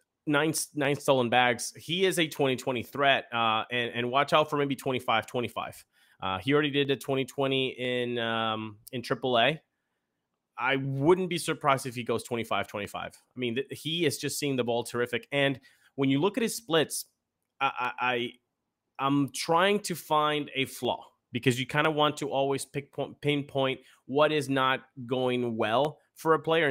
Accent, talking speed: American, 180 wpm